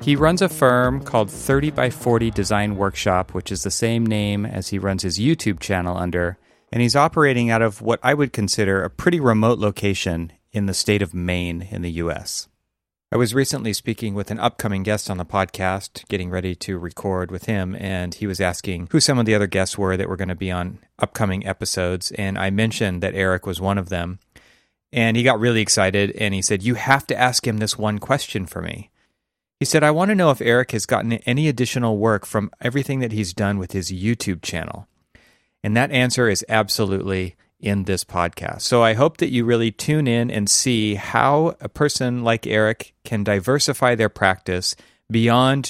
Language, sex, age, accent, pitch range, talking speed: English, male, 30-49, American, 95-120 Hz, 200 wpm